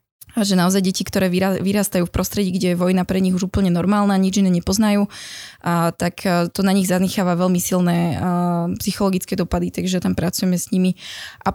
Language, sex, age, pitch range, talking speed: Slovak, female, 20-39, 185-210 Hz, 170 wpm